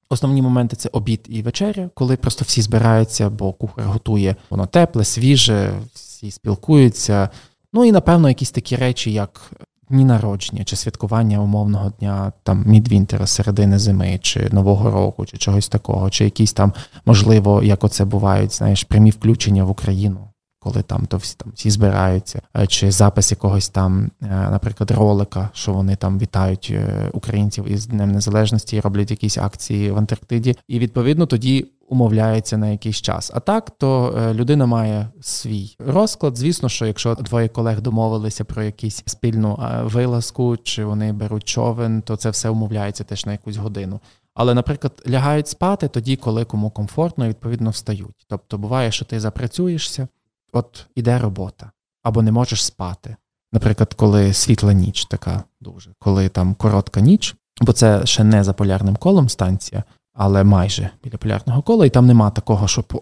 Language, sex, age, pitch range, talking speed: Ukrainian, male, 20-39, 100-120 Hz, 160 wpm